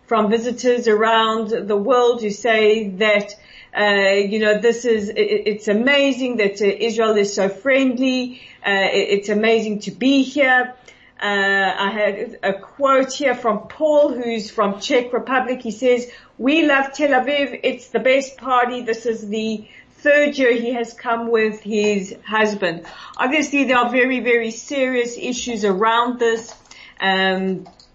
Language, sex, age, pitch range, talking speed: English, female, 40-59, 205-245 Hz, 155 wpm